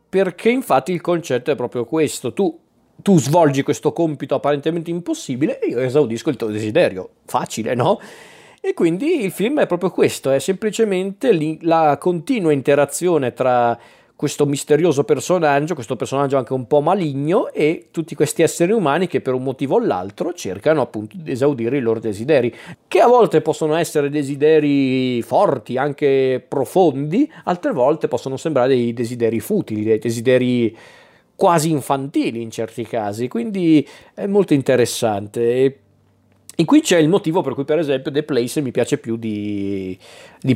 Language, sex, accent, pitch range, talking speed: Italian, male, native, 125-160 Hz, 155 wpm